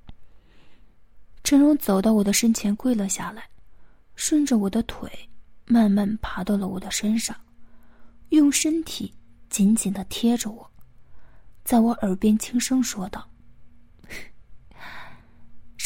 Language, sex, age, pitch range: Chinese, female, 20-39, 205-245 Hz